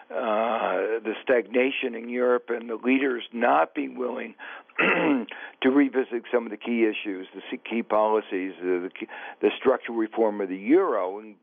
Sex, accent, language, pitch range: male, American, English, 110-130 Hz